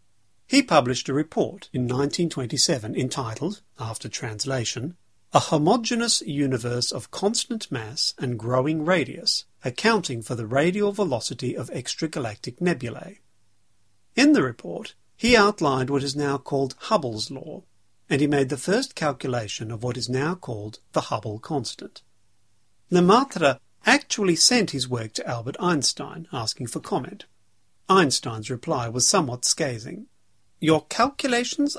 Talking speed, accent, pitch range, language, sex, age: 130 wpm, British, 115-160 Hz, English, male, 50-69